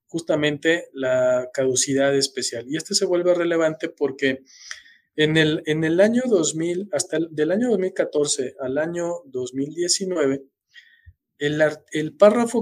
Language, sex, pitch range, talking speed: Spanish, male, 140-190 Hz, 130 wpm